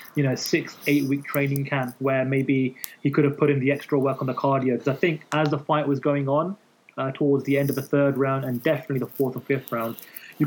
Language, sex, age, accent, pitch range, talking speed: English, male, 20-39, British, 130-150 Hz, 250 wpm